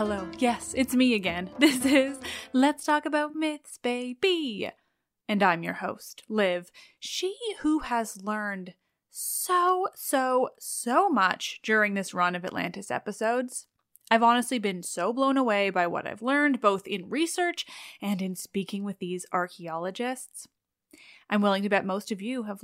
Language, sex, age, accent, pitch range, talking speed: English, female, 20-39, American, 205-275 Hz, 155 wpm